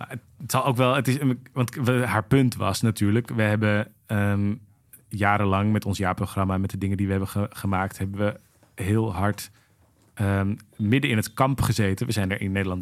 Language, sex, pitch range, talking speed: Dutch, male, 100-120 Hz, 170 wpm